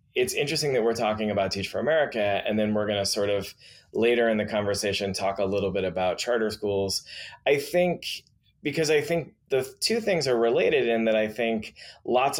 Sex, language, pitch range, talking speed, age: male, English, 100-120 Hz, 200 wpm, 20-39